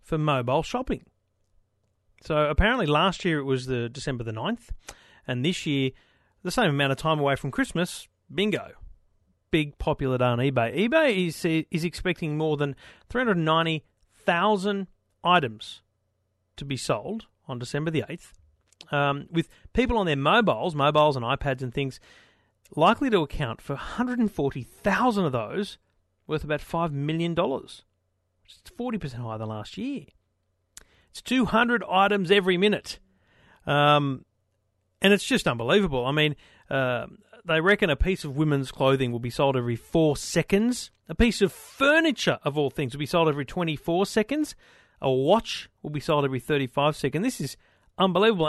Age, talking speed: 40-59, 150 wpm